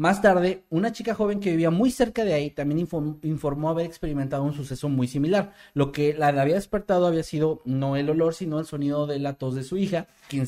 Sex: male